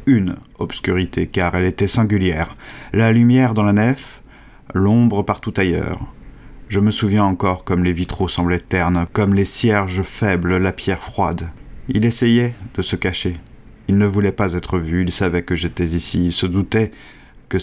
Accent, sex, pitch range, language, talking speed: French, male, 90-105 Hz, French, 170 wpm